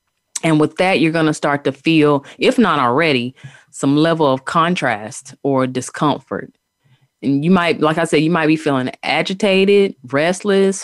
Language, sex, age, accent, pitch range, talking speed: English, female, 30-49, American, 145-185 Hz, 165 wpm